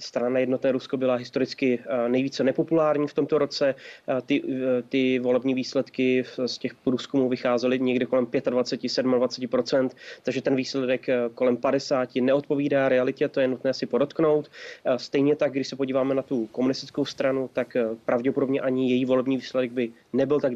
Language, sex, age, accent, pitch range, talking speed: Czech, male, 30-49, native, 125-135 Hz, 155 wpm